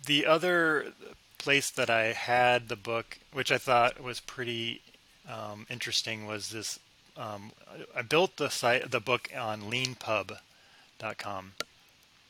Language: English